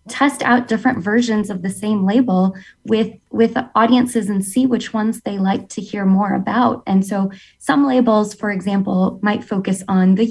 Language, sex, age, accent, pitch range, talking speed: English, female, 20-39, American, 195-240 Hz, 180 wpm